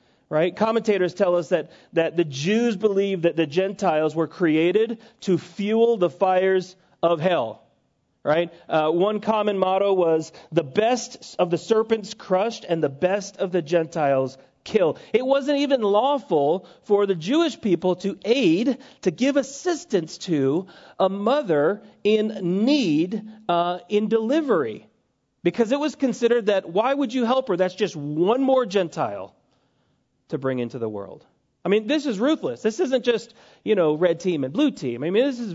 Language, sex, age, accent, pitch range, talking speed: English, male, 40-59, American, 165-225 Hz, 165 wpm